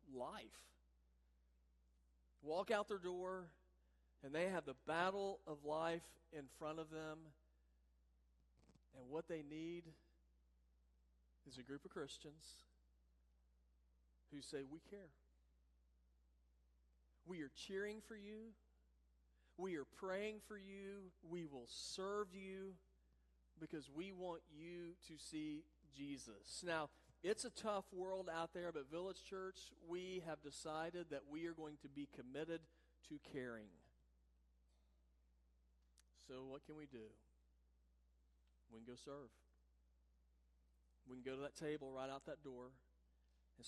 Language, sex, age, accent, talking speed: English, male, 40-59, American, 125 wpm